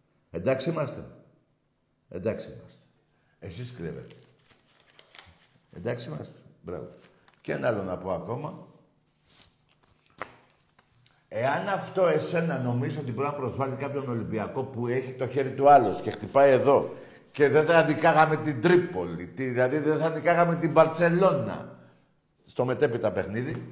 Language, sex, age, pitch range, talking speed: Greek, male, 60-79, 135-190 Hz, 130 wpm